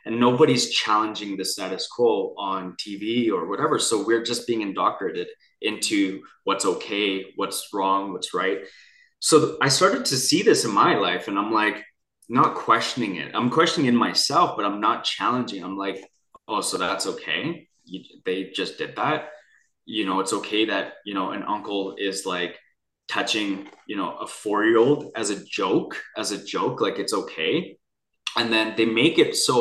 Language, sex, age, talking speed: English, male, 20-39, 180 wpm